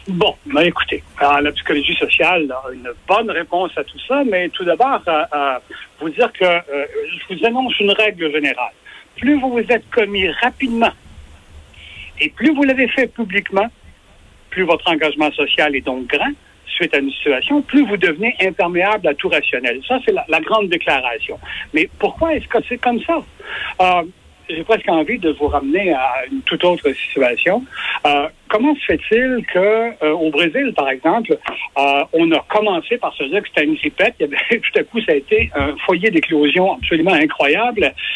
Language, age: French, 60-79